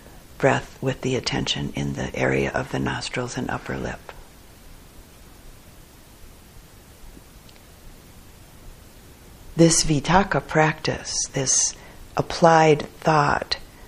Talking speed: 80 wpm